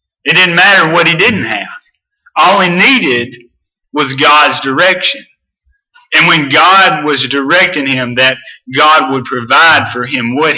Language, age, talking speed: English, 40-59, 145 wpm